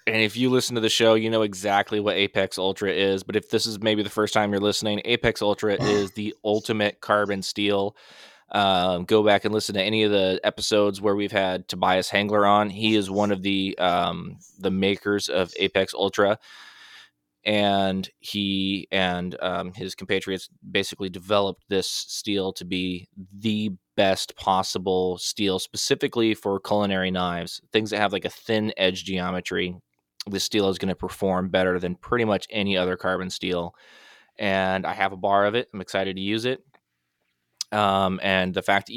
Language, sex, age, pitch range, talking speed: English, male, 20-39, 95-105 Hz, 180 wpm